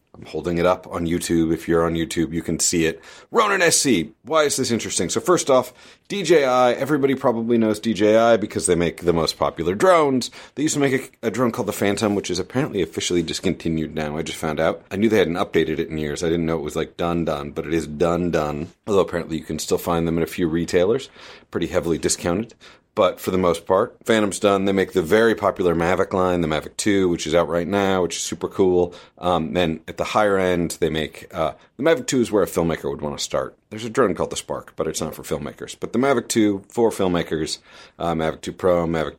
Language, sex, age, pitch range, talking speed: English, male, 30-49, 80-105 Hz, 245 wpm